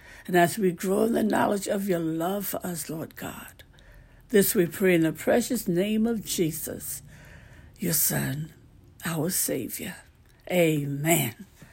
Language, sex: English, female